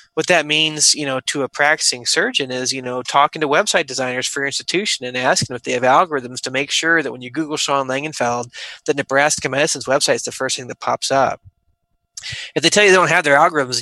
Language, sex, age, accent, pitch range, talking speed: English, male, 20-39, American, 125-150 Hz, 240 wpm